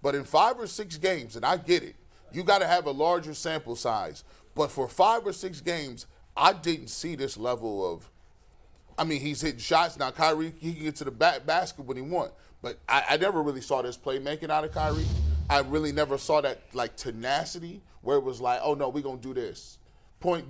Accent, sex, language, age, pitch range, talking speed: American, male, English, 30-49, 130-165 Hz, 225 wpm